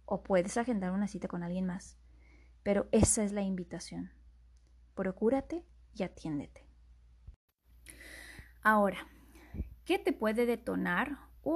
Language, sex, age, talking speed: Spanish, female, 20-39, 115 wpm